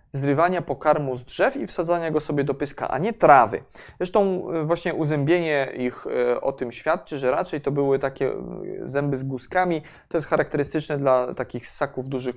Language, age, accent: Polish, 20-39, native